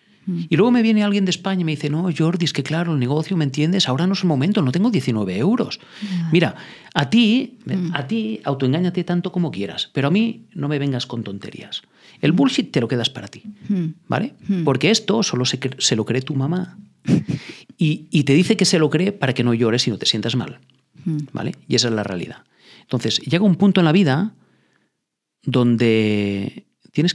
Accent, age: Spanish, 40-59